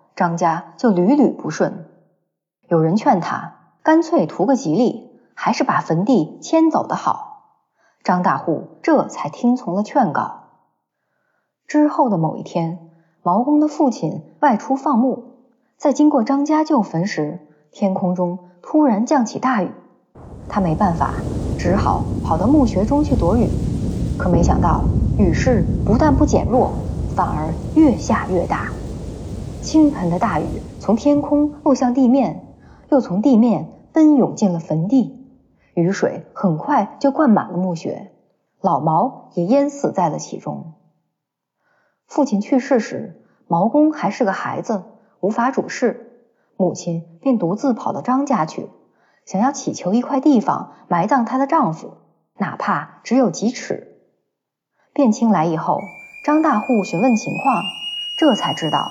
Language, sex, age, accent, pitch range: Chinese, female, 20-39, native, 180-280 Hz